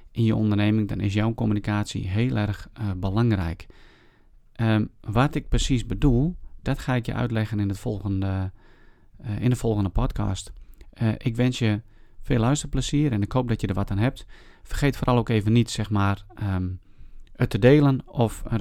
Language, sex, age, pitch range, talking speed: Dutch, male, 30-49, 105-130 Hz, 185 wpm